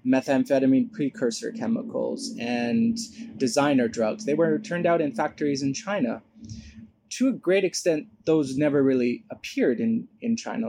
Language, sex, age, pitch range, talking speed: English, male, 20-39, 120-165 Hz, 140 wpm